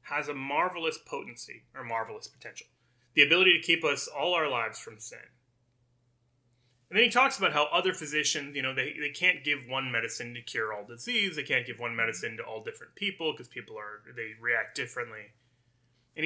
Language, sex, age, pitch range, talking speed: English, male, 30-49, 120-185 Hz, 195 wpm